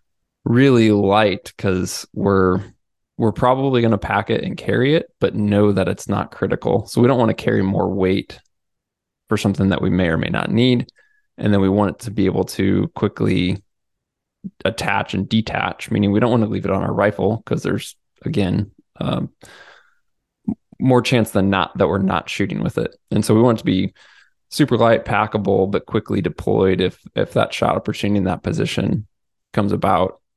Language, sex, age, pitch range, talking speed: English, male, 20-39, 95-115 Hz, 190 wpm